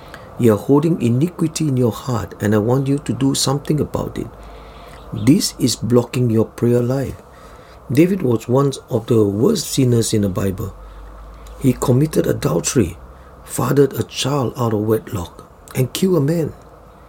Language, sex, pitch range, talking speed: English, male, 110-140 Hz, 160 wpm